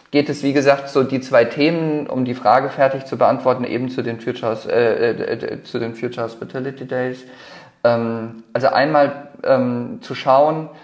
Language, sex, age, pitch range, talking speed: German, male, 40-59, 120-145 Hz, 175 wpm